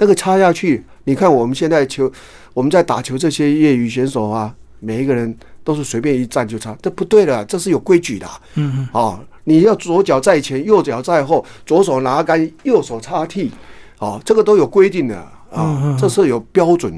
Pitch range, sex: 130-165 Hz, male